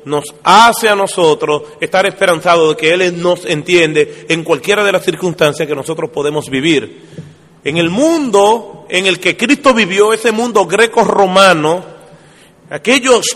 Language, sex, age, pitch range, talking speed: Spanish, male, 30-49, 180-245 Hz, 145 wpm